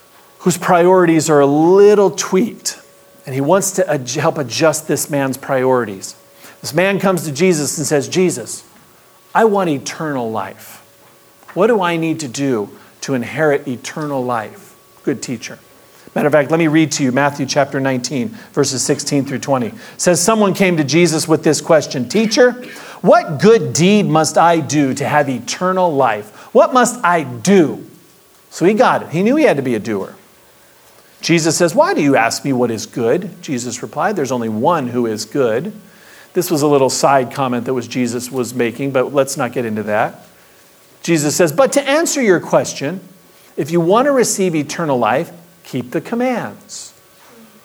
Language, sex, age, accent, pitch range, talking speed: English, male, 40-59, American, 135-195 Hz, 180 wpm